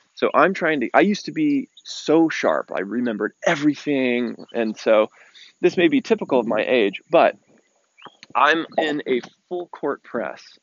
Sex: male